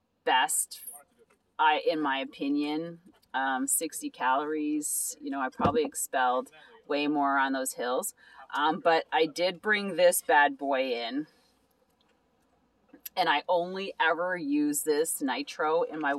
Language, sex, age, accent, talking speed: English, female, 30-49, American, 135 wpm